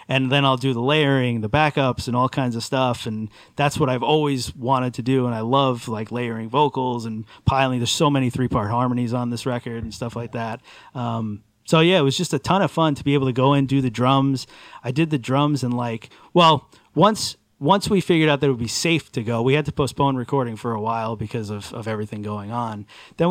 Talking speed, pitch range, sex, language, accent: 240 wpm, 120-145 Hz, male, English, American